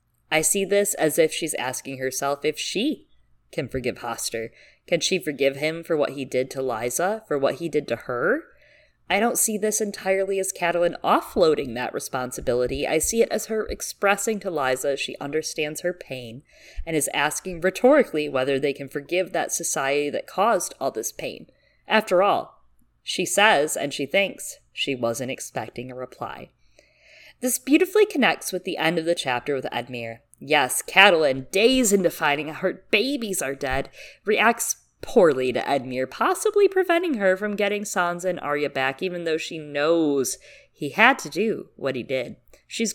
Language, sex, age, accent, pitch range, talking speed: English, female, 20-39, American, 135-225 Hz, 170 wpm